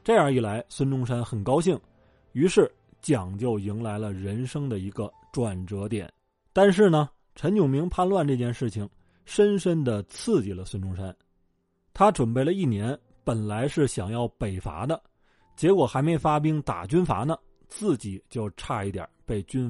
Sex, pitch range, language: male, 105-155 Hz, Chinese